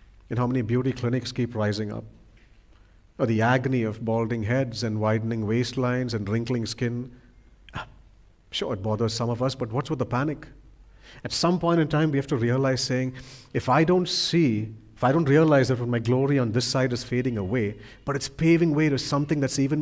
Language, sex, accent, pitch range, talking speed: English, male, Indian, 115-145 Hz, 200 wpm